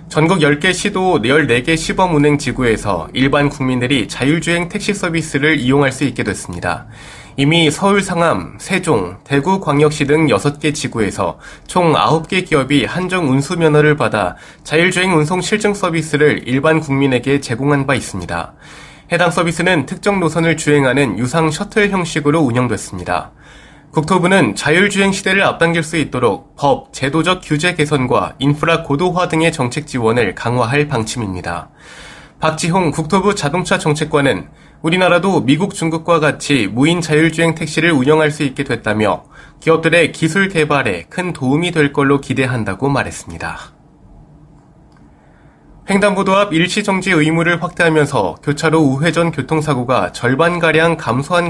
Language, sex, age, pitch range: Korean, male, 20-39, 140-170 Hz